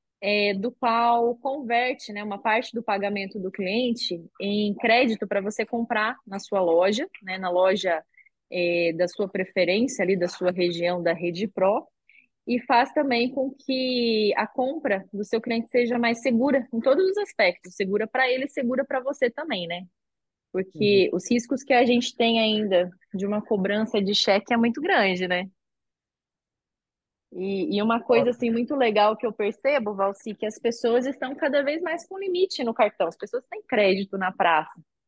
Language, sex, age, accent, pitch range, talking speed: Portuguese, female, 20-39, Brazilian, 200-245 Hz, 175 wpm